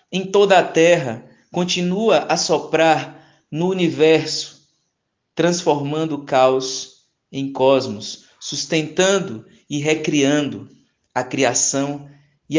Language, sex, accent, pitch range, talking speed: Portuguese, male, Brazilian, 135-170 Hz, 95 wpm